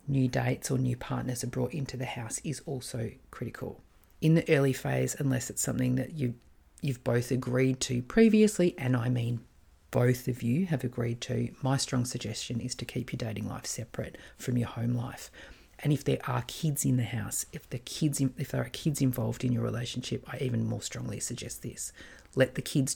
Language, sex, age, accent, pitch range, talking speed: English, female, 40-59, Australian, 125-140 Hz, 195 wpm